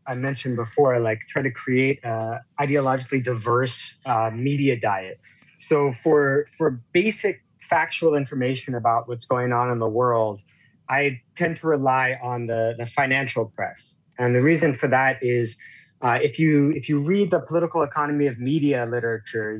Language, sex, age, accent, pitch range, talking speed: English, male, 30-49, American, 120-145 Hz, 160 wpm